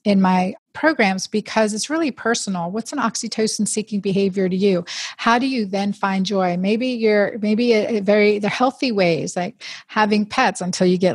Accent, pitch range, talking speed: American, 185-225 Hz, 190 wpm